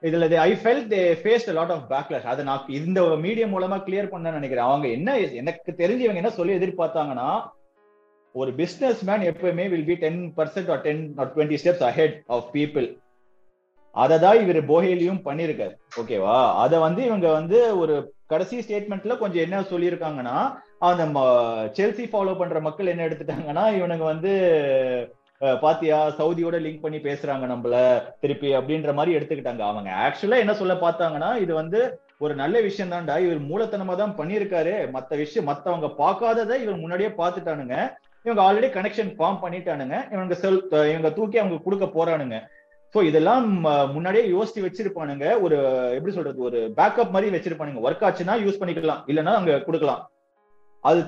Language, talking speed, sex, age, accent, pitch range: Tamil, 120 wpm, male, 30-49, native, 150-195 Hz